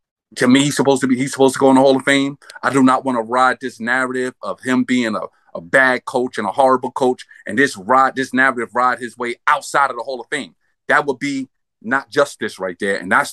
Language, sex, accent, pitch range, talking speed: English, male, American, 130-195 Hz, 255 wpm